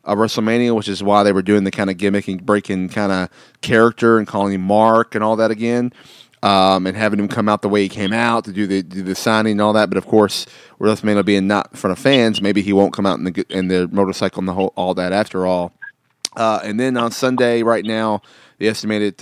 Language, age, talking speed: English, 30-49, 255 wpm